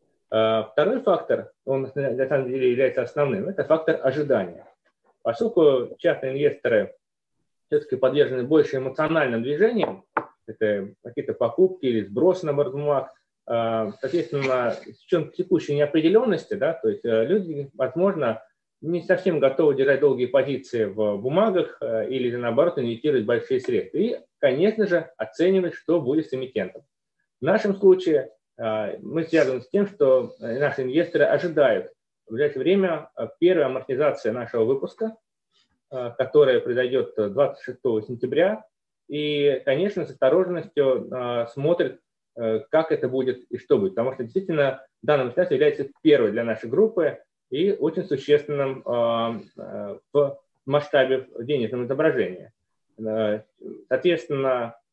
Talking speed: 115 wpm